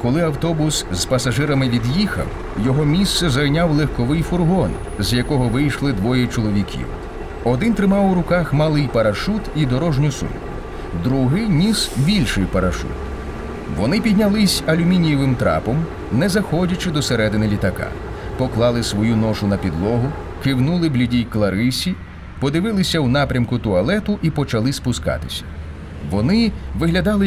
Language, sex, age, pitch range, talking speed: Ukrainian, male, 30-49, 110-160 Hz, 120 wpm